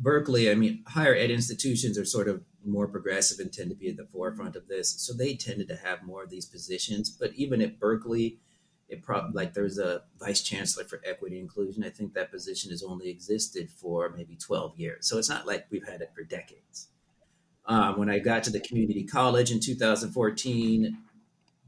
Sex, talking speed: male, 205 wpm